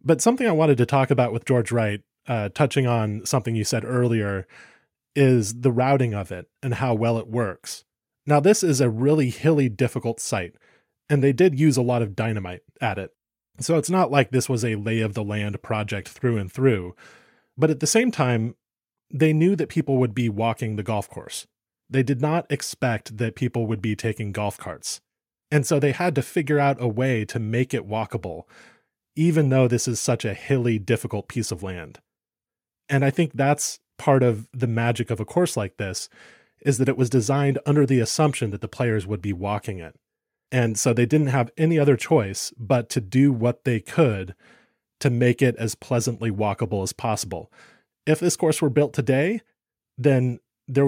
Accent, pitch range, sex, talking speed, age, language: American, 110-140 Hz, male, 195 wpm, 20-39, English